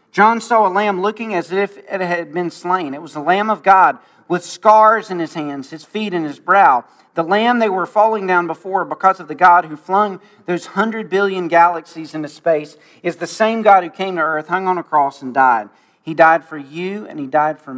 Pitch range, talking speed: 165-215 Hz, 230 wpm